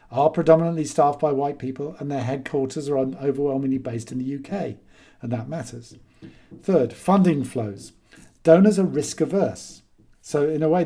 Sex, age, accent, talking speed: male, 50-69, British, 160 wpm